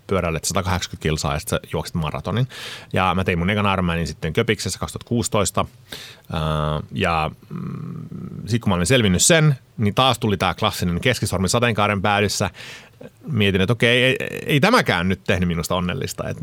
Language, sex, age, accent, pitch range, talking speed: Finnish, male, 30-49, native, 90-125 Hz, 145 wpm